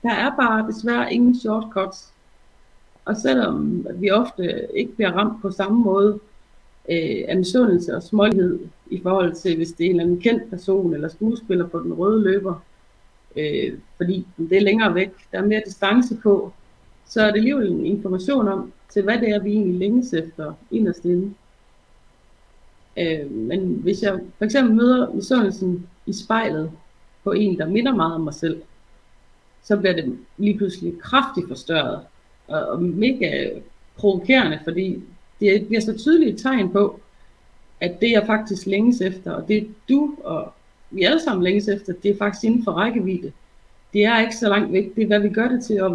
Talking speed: 180 wpm